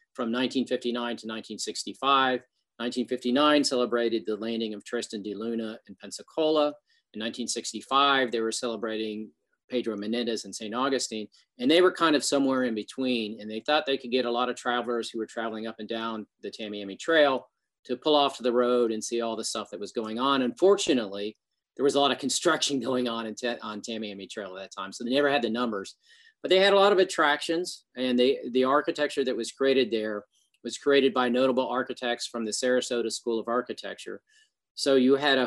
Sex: male